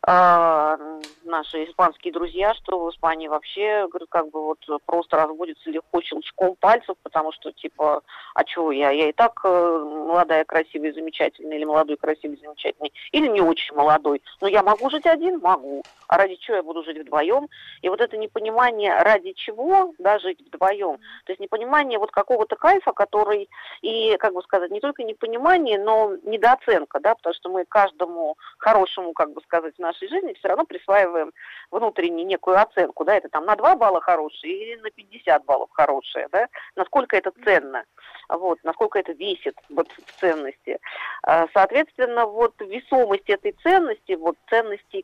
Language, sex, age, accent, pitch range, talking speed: Russian, female, 40-59, native, 165-235 Hz, 160 wpm